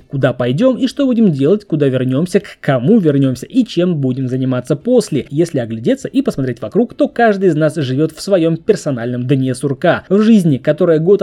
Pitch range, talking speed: 140-210 Hz, 185 wpm